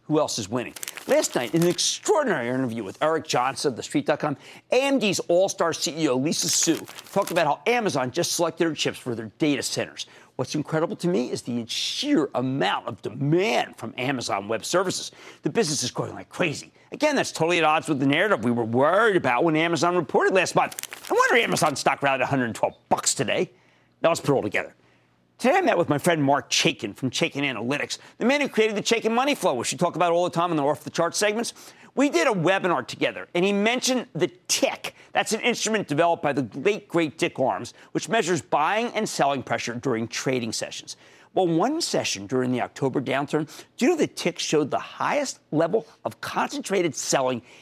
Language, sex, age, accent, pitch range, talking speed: English, male, 50-69, American, 135-200 Hz, 210 wpm